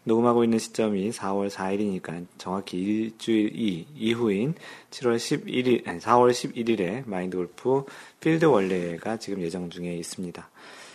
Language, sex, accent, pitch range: Korean, male, native, 100-130 Hz